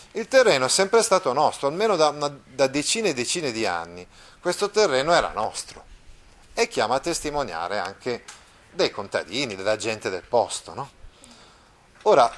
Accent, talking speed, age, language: native, 155 wpm, 30-49, Italian